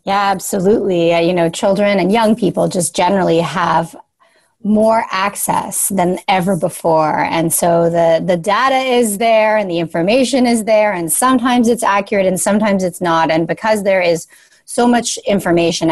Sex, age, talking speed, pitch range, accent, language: female, 30-49, 165 wpm, 170-210 Hz, American, English